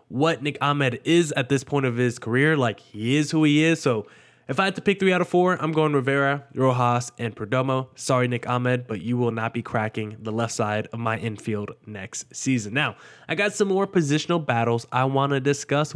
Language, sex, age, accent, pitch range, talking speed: English, male, 20-39, American, 120-160 Hz, 225 wpm